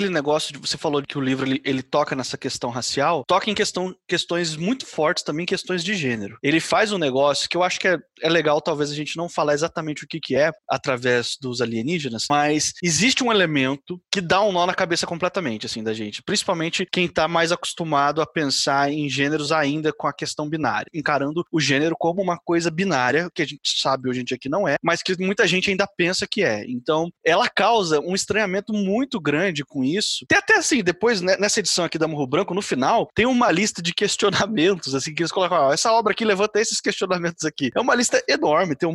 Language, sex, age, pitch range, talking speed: Portuguese, male, 20-39, 150-200 Hz, 225 wpm